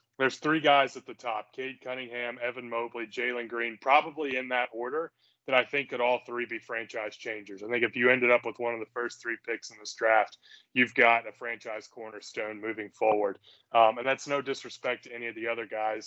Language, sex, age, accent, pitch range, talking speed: English, male, 20-39, American, 115-135 Hz, 220 wpm